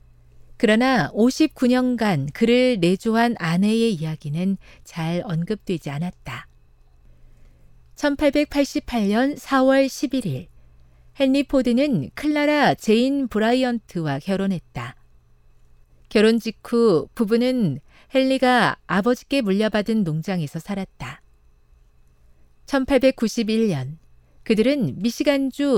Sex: female